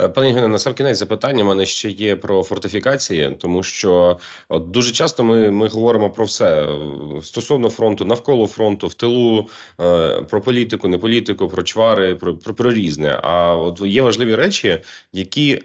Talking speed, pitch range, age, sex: 170 wpm, 95-115 Hz, 30-49, male